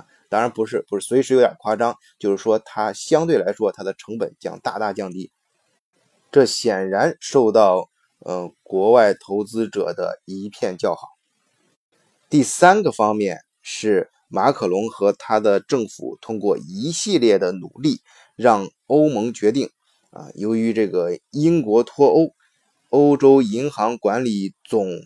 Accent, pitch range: native, 105-150 Hz